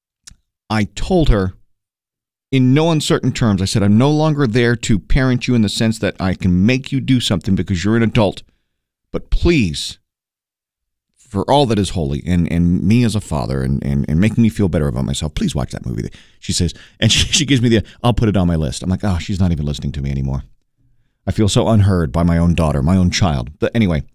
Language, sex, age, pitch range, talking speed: English, male, 40-59, 95-140 Hz, 230 wpm